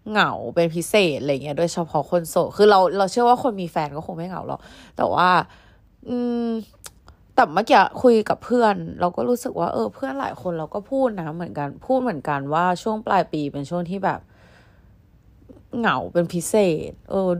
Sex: female